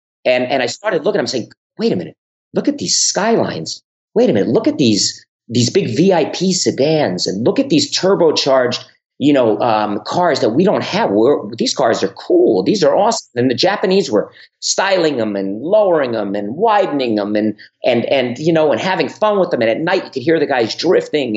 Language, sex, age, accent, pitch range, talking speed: English, male, 40-59, American, 135-175 Hz, 215 wpm